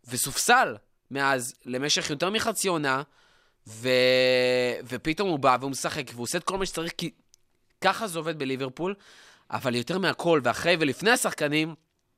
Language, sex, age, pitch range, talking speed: Hebrew, male, 20-39, 135-190 Hz, 145 wpm